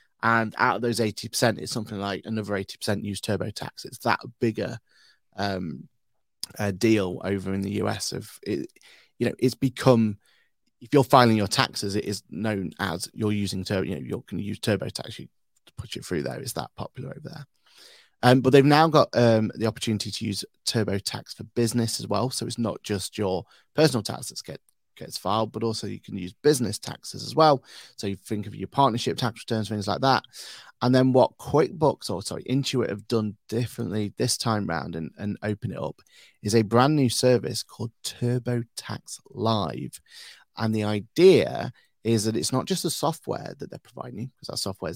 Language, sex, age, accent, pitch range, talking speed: English, male, 30-49, British, 105-125 Hz, 200 wpm